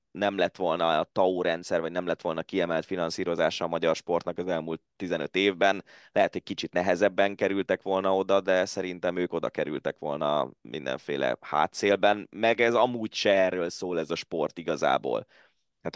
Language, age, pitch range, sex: Hungarian, 20-39, 85-110 Hz, male